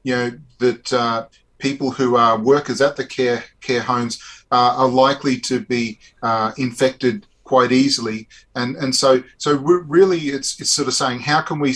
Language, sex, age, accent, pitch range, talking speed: English, male, 40-59, Australian, 120-135 Hz, 185 wpm